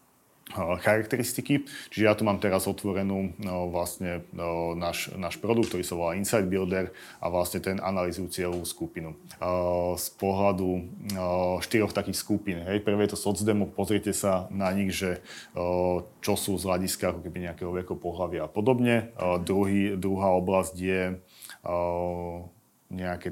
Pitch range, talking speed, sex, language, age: 90-100 Hz, 155 wpm, male, Slovak, 30-49